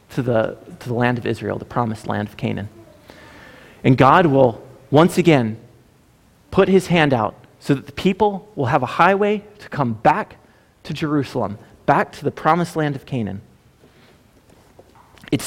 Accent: American